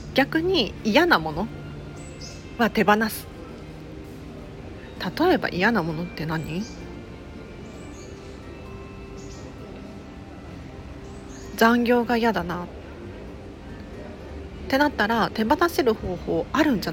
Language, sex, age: Japanese, female, 40-59